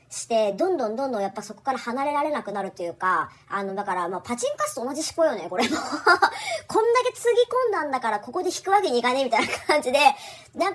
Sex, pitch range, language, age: male, 210-345 Hz, Japanese, 40-59